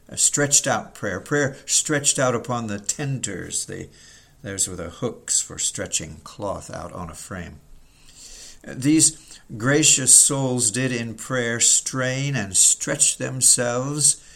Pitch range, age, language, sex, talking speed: 110-130 Hz, 60-79, English, male, 130 wpm